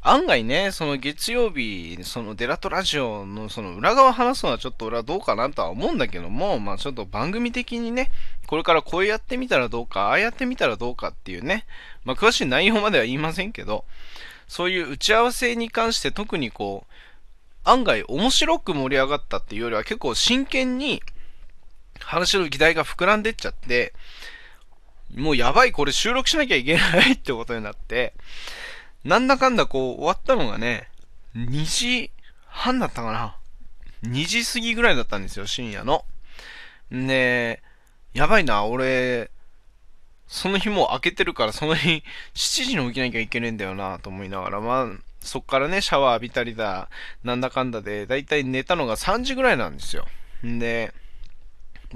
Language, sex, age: Japanese, male, 20-39